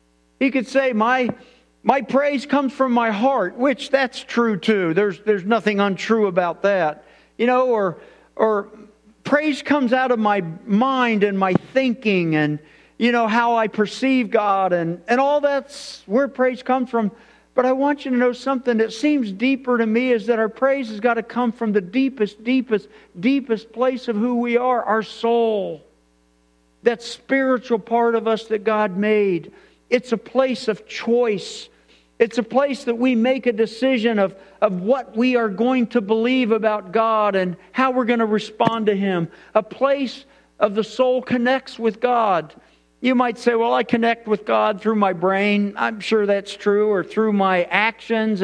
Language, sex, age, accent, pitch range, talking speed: English, male, 50-69, American, 205-250 Hz, 180 wpm